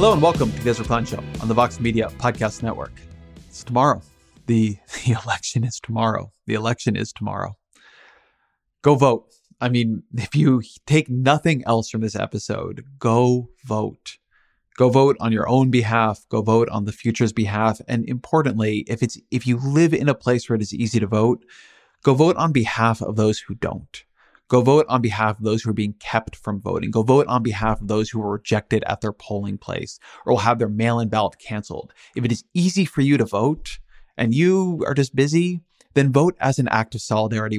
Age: 30-49